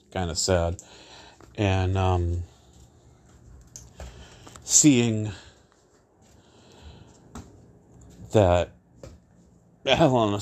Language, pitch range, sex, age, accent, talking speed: English, 85-110 Hz, male, 40-59, American, 60 wpm